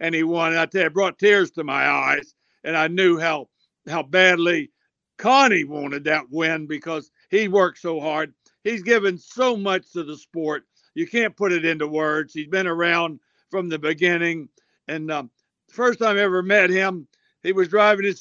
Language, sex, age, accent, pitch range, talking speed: English, male, 60-79, American, 155-195 Hz, 195 wpm